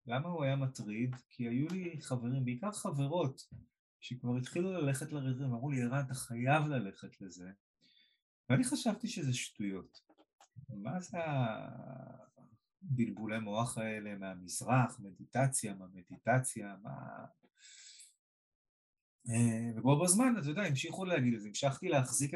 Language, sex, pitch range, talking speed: Hebrew, male, 110-150 Hz, 120 wpm